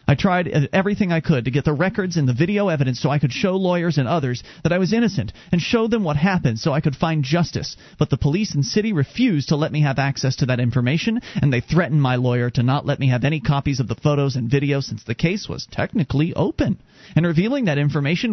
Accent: American